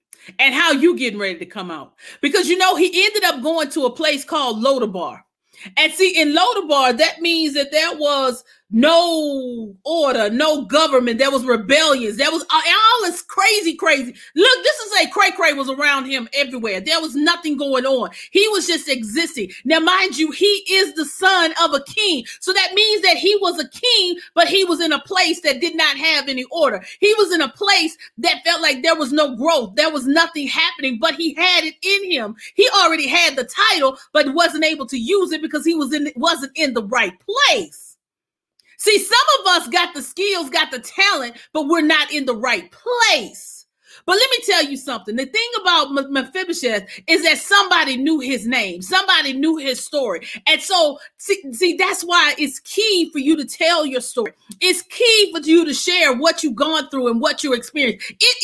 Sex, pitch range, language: female, 275-360 Hz, English